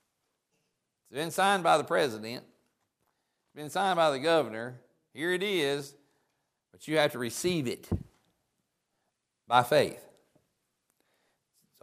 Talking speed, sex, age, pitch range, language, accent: 115 wpm, male, 60-79, 130-170 Hz, English, American